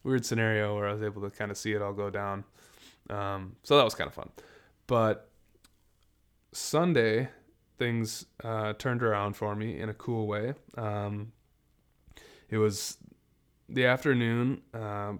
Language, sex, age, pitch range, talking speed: English, male, 20-39, 105-120 Hz, 155 wpm